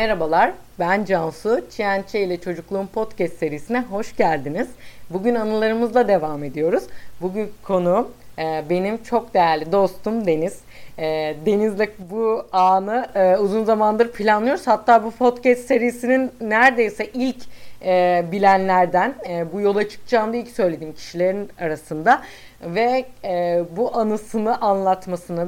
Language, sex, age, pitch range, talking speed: Turkish, female, 40-59, 190-240 Hz, 105 wpm